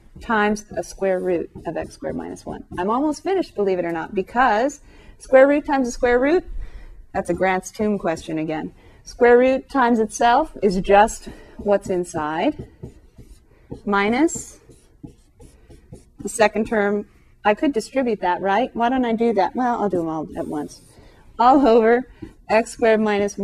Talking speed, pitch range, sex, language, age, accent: 160 wpm, 185-245 Hz, female, English, 30-49, American